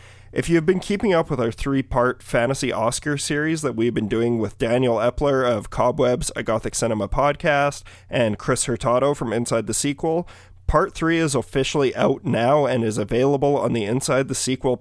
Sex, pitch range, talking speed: male, 110-140 Hz, 180 wpm